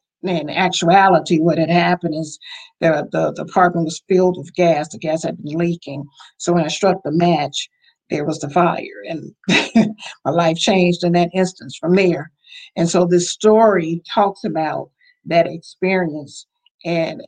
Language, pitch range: English, 165-195 Hz